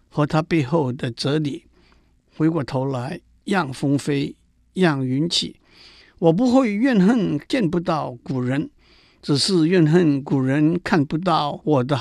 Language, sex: Chinese, male